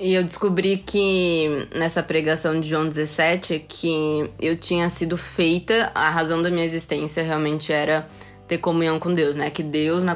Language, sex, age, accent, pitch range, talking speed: Portuguese, female, 20-39, Brazilian, 150-175 Hz, 170 wpm